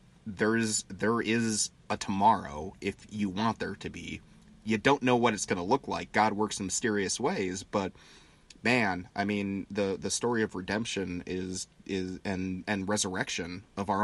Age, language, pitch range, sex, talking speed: 30-49, English, 95-105 Hz, male, 175 wpm